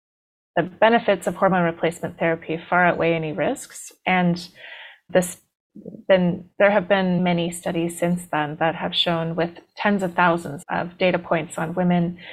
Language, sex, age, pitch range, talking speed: English, female, 30-49, 170-195 Hz, 155 wpm